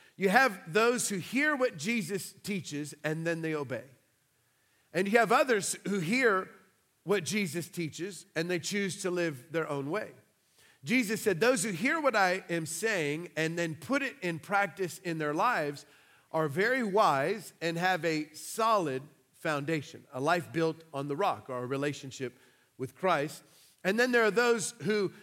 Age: 40-59